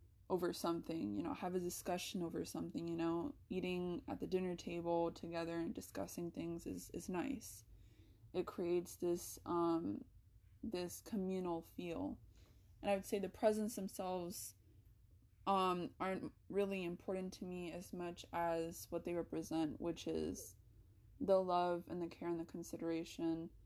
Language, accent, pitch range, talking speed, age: English, American, 165-195 Hz, 150 wpm, 20-39